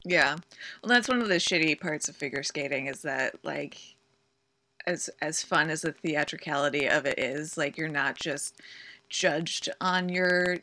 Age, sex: 20-39, female